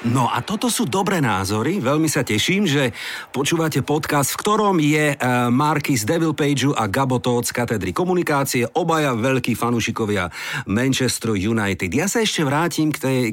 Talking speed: 160 wpm